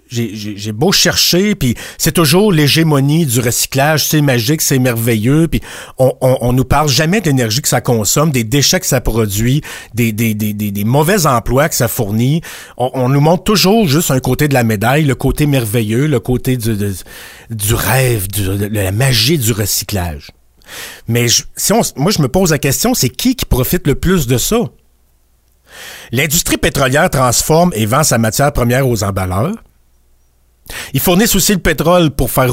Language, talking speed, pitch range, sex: French, 195 wpm, 115-175 Hz, male